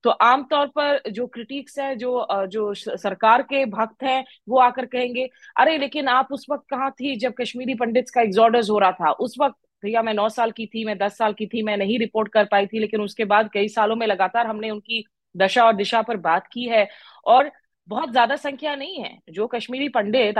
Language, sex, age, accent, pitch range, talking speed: Hindi, female, 20-39, native, 215-275 Hz, 210 wpm